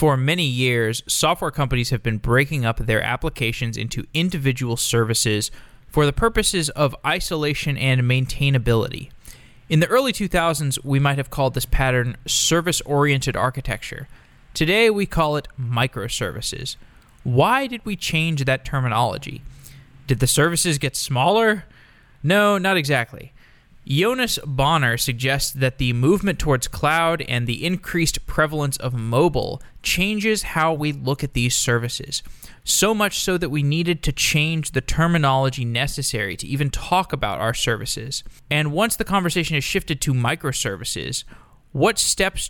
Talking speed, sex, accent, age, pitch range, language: 140 wpm, male, American, 20-39, 125-160 Hz, English